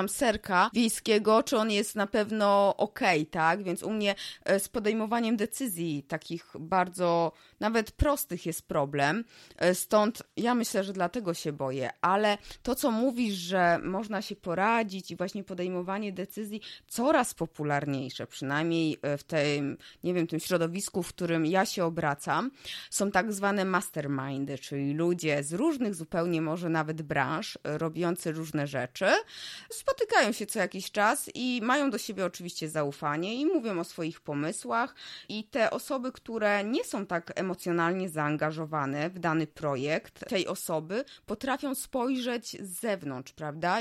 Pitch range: 165-230 Hz